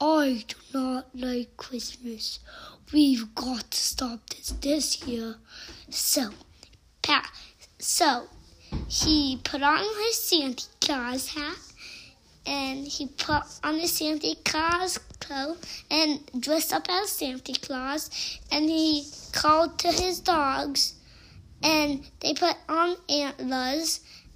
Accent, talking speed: American, 115 wpm